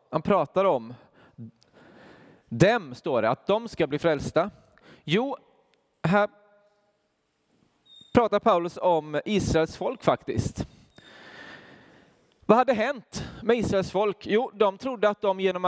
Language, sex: Swedish, male